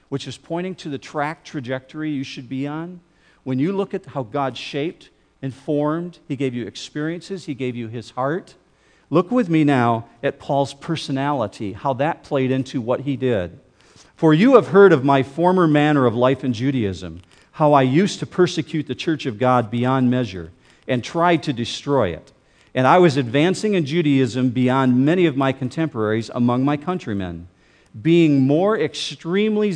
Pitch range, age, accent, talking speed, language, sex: 130-160 Hz, 50-69, American, 175 wpm, English, male